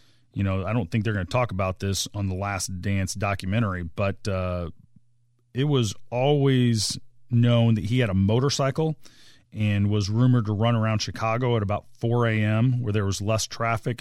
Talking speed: 185 wpm